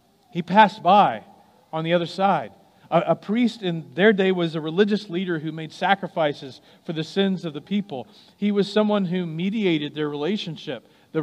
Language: English